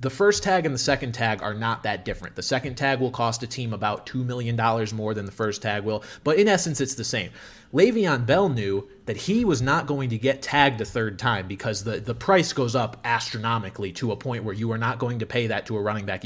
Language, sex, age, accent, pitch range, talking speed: English, male, 30-49, American, 110-140 Hz, 255 wpm